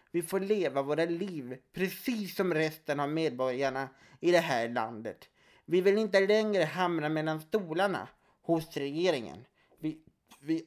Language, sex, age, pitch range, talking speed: Swedish, male, 30-49, 155-200 Hz, 140 wpm